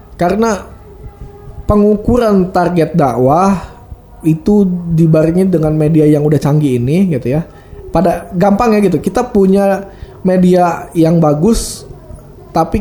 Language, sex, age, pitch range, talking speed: Indonesian, male, 20-39, 145-180 Hz, 110 wpm